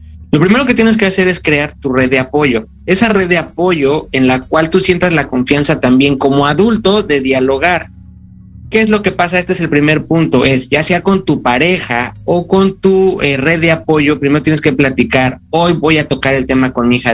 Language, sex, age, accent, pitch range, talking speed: Spanish, male, 30-49, Mexican, 130-180 Hz, 225 wpm